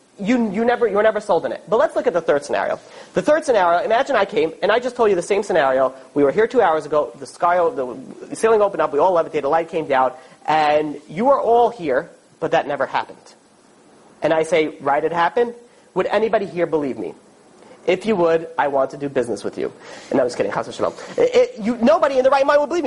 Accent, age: American, 30-49